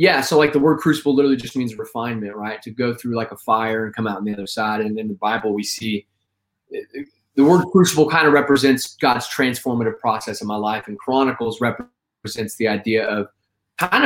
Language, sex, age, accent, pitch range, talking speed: English, male, 20-39, American, 110-135 Hz, 215 wpm